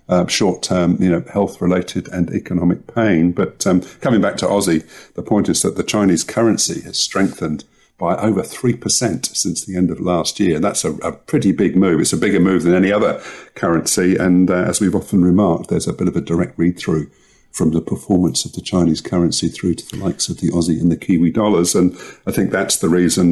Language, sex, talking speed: English, male, 220 wpm